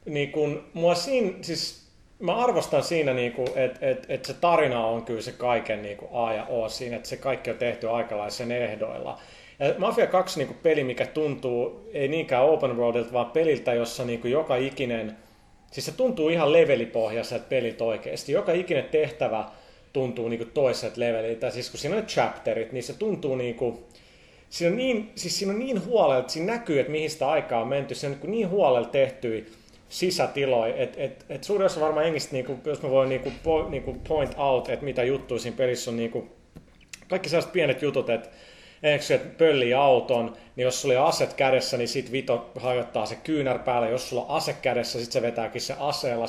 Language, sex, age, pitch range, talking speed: Finnish, male, 30-49, 120-160 Hz, 195 wpm